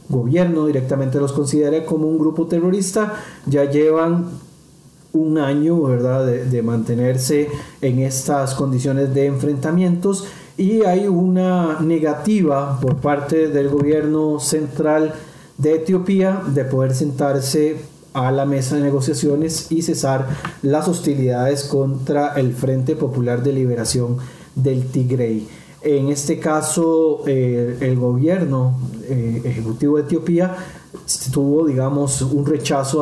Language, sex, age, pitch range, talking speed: Spanish, male, 40-59, 130-160 Hz, 120 wpm